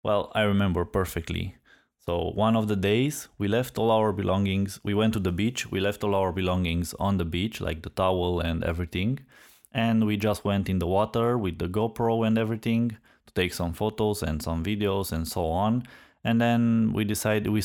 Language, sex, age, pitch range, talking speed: English, male, 20-39, 85-105 Hz, 200 wpm